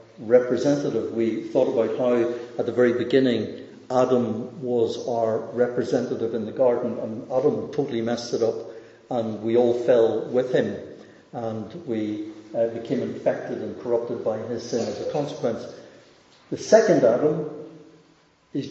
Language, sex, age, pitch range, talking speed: English, male, 60-79, 125-175 Hz, 140 wpm